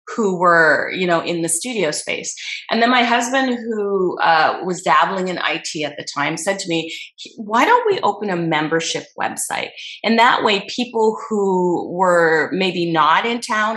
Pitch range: 170-210 Hz